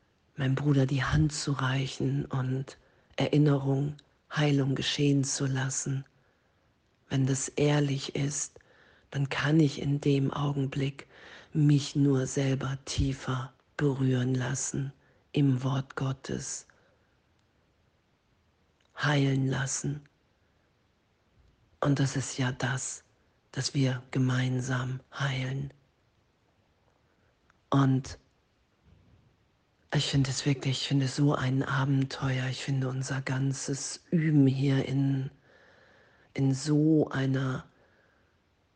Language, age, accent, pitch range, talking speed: German, 40-59, German, 130-145 Hz, 95 wpm